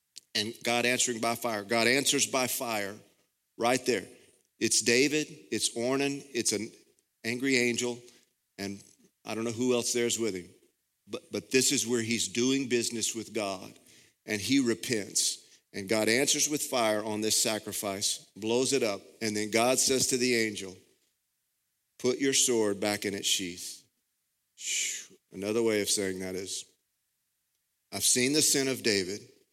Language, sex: English, male